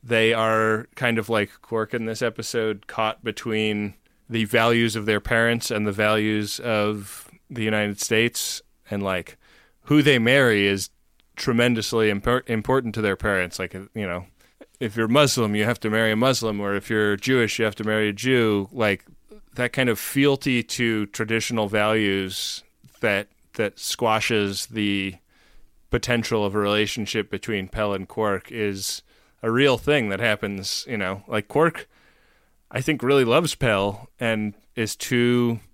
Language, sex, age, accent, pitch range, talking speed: English, male, 20-39, American, 105-120 Hz, 160 wpm